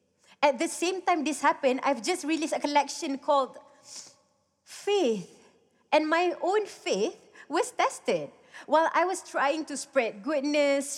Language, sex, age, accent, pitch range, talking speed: English, female, 30-49, Malaysian, 240-300 Hz, 140 wpm